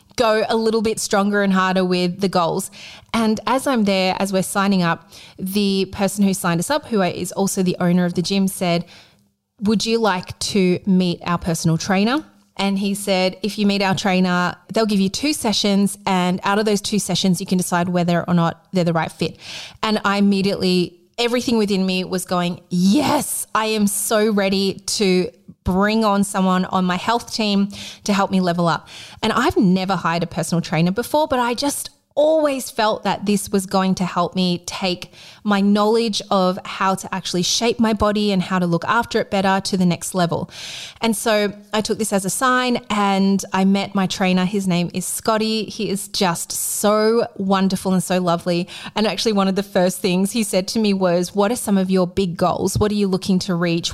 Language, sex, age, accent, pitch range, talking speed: English, female, 30-49, Australian, 180-215 Hz, 210 wpm